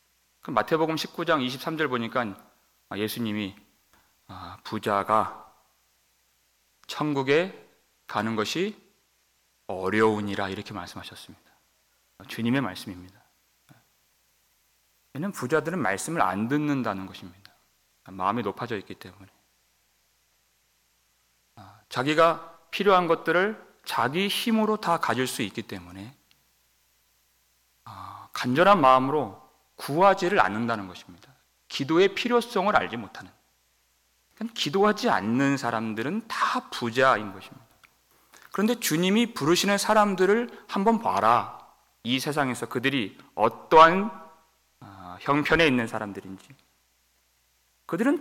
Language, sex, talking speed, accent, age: English, male, 75 wpm, Korean, 30-49